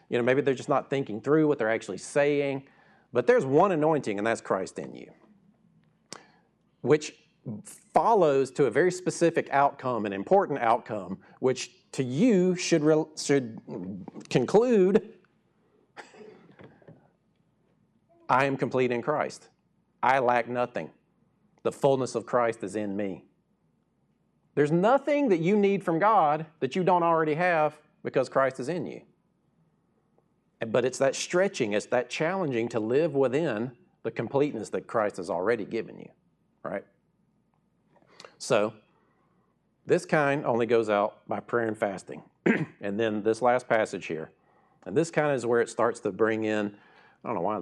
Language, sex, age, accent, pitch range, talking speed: English, male, 40-59, American, 110-155 Hz, 150 wpm